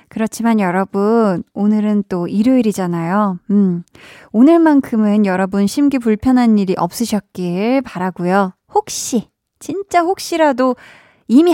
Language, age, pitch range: Korean, 20-39, 195-265 Hz